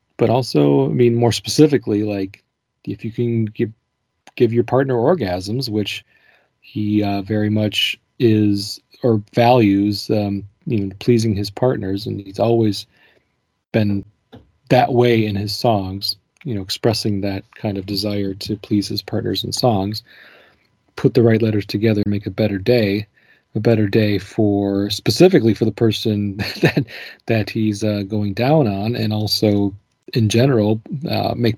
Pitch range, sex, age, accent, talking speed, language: 100-120 Hz, male, 30-49, American, 155 wpm, English